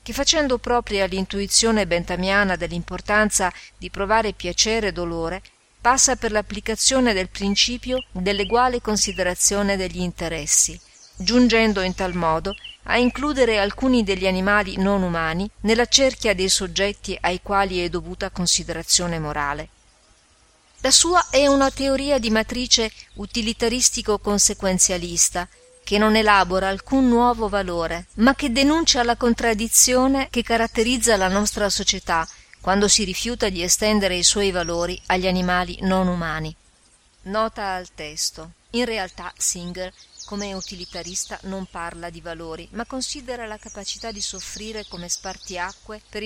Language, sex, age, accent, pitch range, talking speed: Italian, female, 40-59, native, 180-225 Hz, 125 wpm